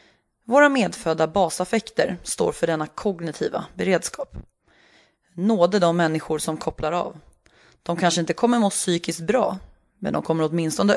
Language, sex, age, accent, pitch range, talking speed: English, female, 30-49, Swedish, 160-225 Hz, 135 wpm